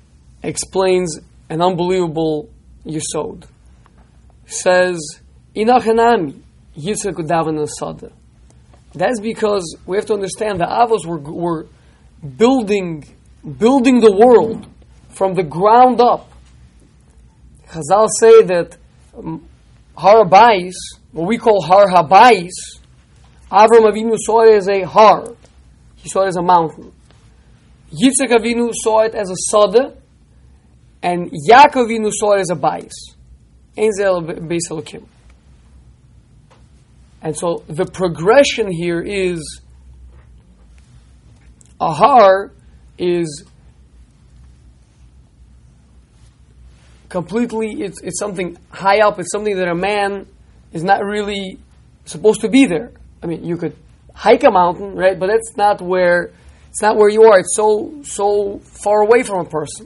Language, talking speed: English, 105 wpm